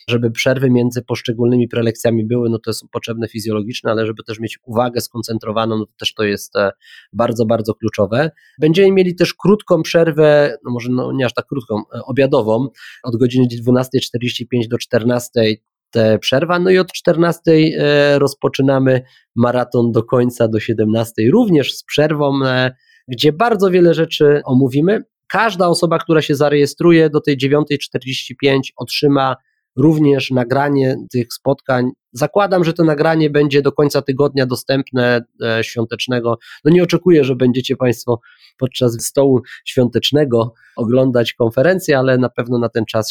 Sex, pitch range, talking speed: male, 115-140 Hz, 145 wpm